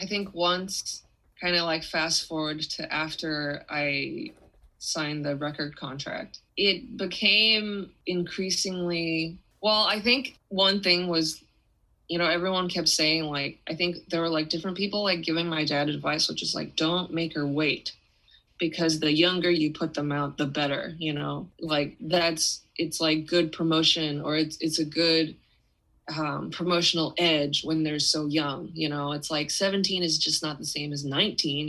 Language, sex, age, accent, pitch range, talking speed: English, female, 20-39, American, 150-180 Hz, 170 wpm